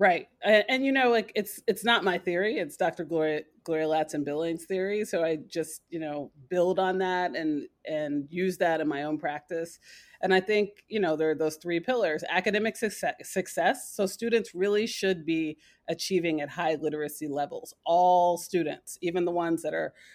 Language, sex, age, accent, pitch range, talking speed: English, female, 30-49, American, 160-200 Hz, 195 wpm